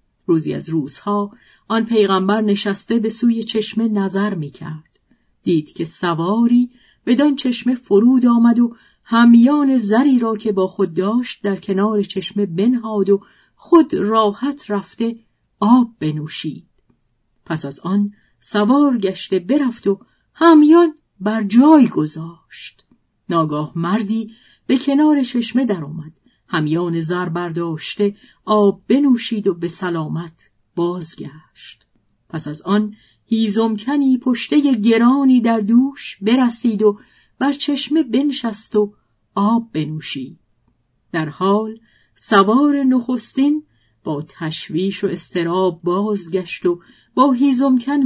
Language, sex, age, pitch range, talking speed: Persian, female, 50-69, 170-240 Hz, 115 wpm